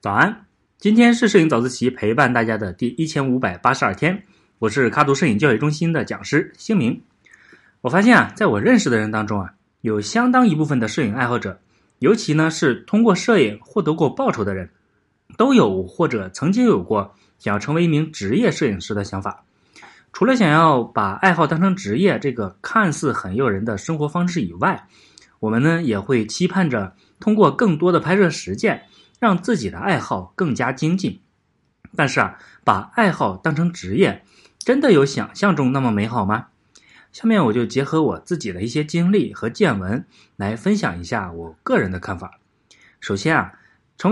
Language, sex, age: Chinese, male, 20-39